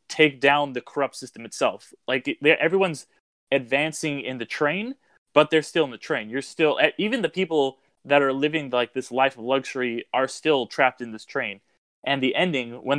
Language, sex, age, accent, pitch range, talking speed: English, male, 20-39, American, 120-145 Hz, 190 wpm